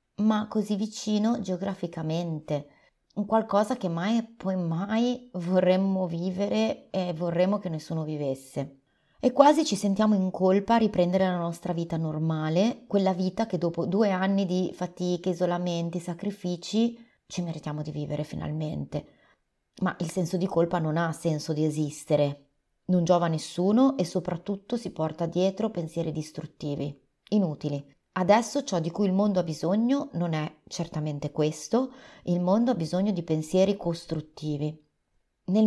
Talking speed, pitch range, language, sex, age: 145 wpm, 170-205 Hz, Italian, female, 30-49